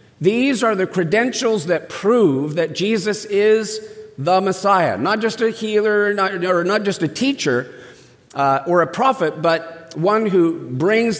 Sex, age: male, 50-69